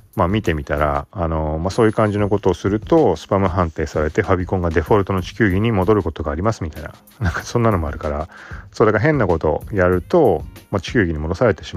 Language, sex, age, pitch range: Japanese, male, 30-49, 85-115 Hz